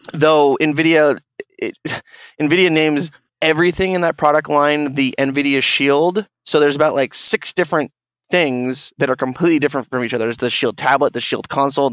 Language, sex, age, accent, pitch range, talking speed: English, male, 20-39, American, 130-150 Hz, 170 wpm